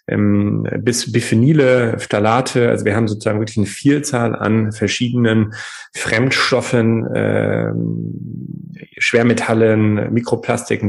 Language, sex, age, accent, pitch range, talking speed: German, male, 30-49, German, 100-120 Hz, 90 wpm